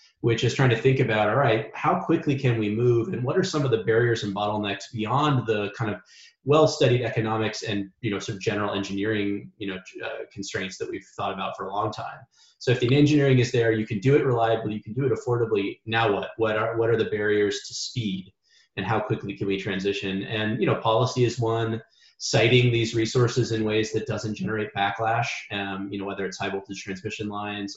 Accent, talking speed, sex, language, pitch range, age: American, 225 wpm, male, English, 105-125 Hz, 30-49